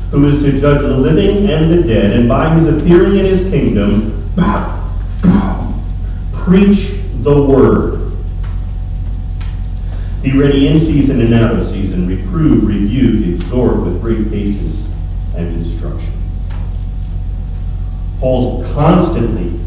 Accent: American